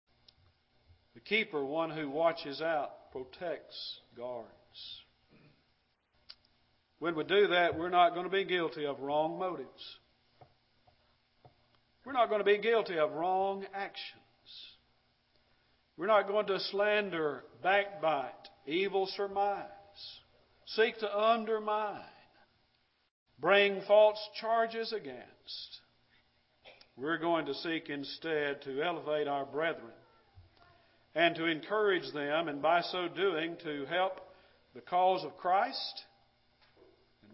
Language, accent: English, American